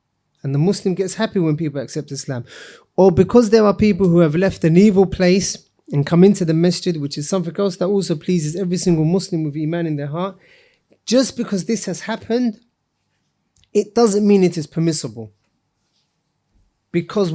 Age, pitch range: 30-49, 155-205 Hz